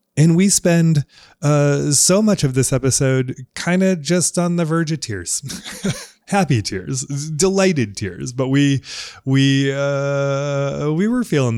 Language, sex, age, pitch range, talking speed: English, male, 20-39, 105-155 Hz, 145 wpm